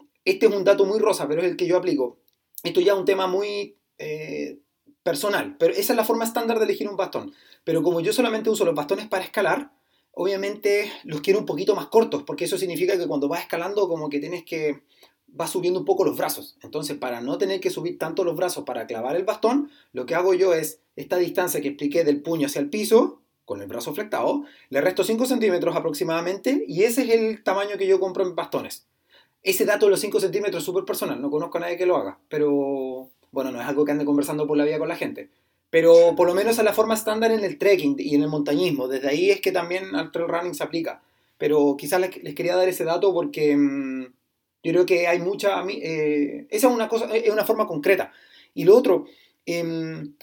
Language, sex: Spanish, male